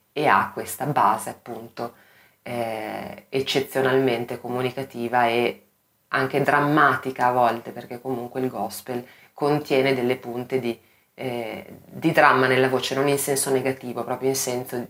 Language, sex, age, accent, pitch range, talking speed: Italian, female, 20-39, native, 120-135 Hz, 135 wpm